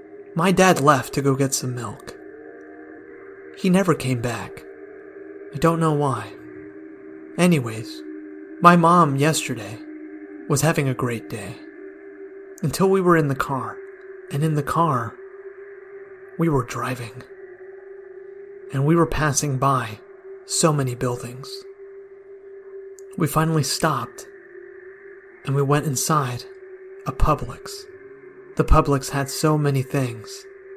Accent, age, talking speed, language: American, 30-49, 120 wpm, English